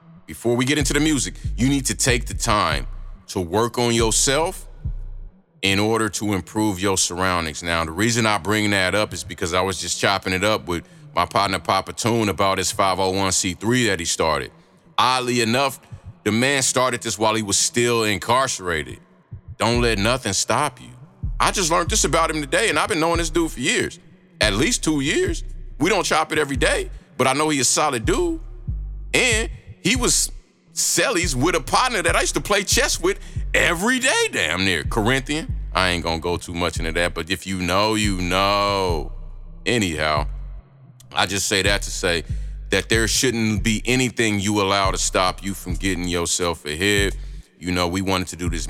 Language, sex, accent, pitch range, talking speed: English, male, American, 90-120 Hz, 195 wpm